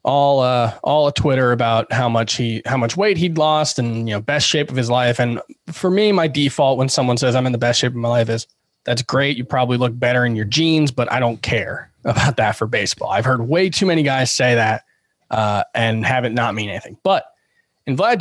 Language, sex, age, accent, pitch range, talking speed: English, male, 20-39, American, 115-155 Hz, 245 wpm